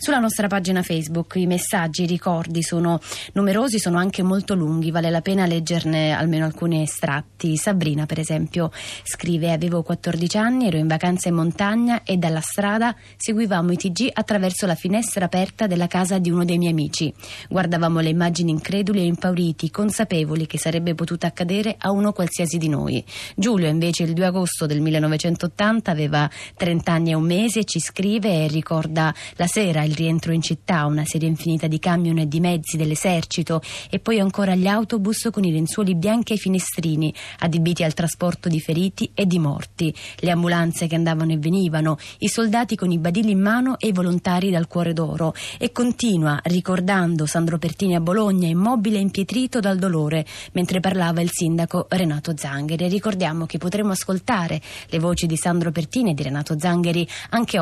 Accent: native